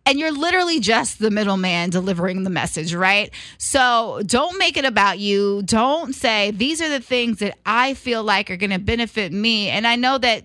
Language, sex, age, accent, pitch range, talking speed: English, female, 20-39, American, 195-255 Hz, 200 wpm